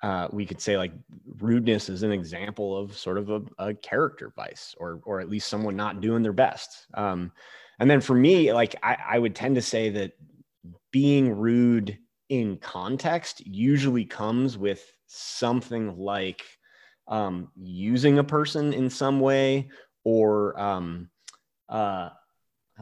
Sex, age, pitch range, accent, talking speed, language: male, 20-39, 95-120 Hz, American, 150 wpm, English